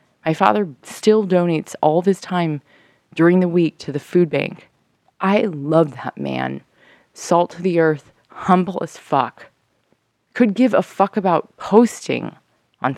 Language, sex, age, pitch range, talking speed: English, female, 20-39, 130-175 Hz, 155 wpm